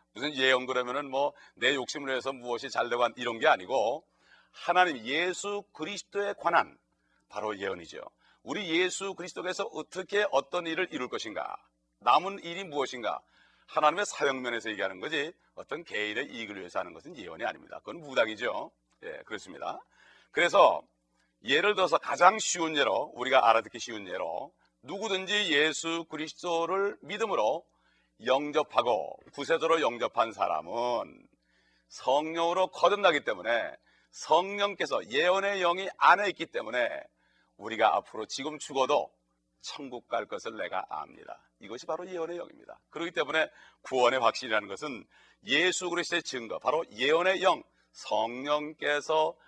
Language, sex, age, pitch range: Korean, male, 40-59, 115-175 Hz